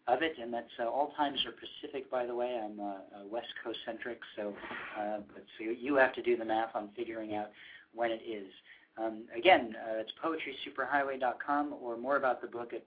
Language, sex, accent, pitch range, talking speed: English, male, American, 115-130 Hz, 205 wpm